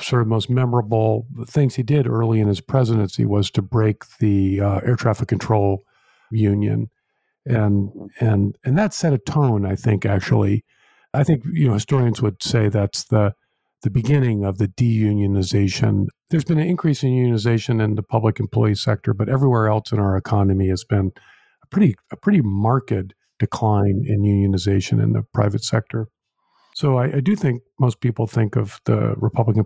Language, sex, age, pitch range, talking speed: English, male, 50-69, 105-130 Hz, 175 wpm